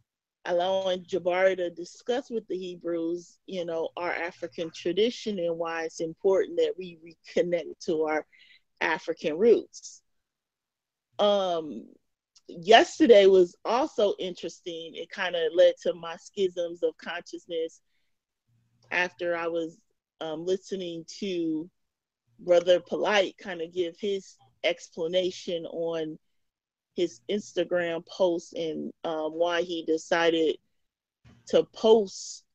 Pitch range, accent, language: 165-215 Hz, American, English